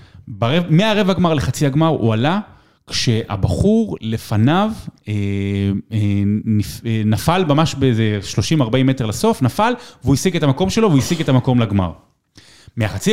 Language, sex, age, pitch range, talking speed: Hebrew, male, 30-49, 115-165 Hz, 140 wpm